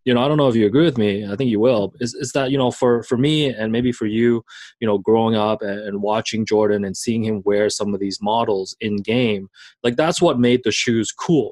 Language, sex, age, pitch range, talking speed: English, male, 20-39, 105-135 Hz, 260 wpm